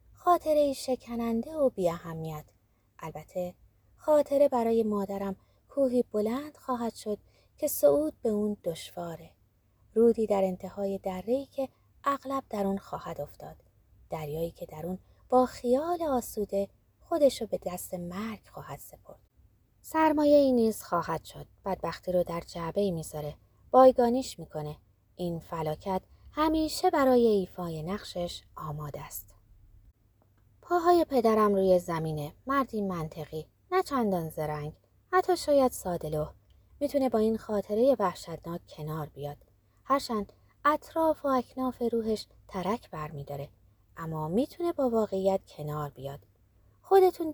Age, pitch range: 20-39, 160-260 Hz